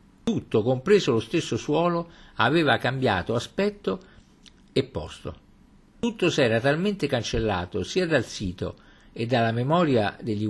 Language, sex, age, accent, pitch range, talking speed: Italian, male, 50-69, native, 100-150 Hz, 125 wpm